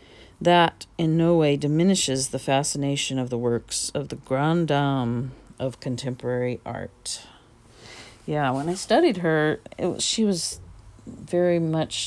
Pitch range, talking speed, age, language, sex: 125-155 Hz, 140 wpm, 50-69, English, female